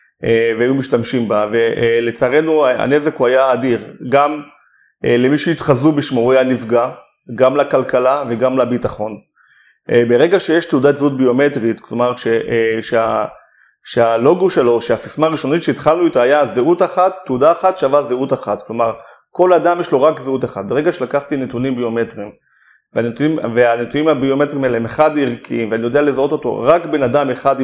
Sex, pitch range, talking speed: male, 120-145 Hz, 145 wpm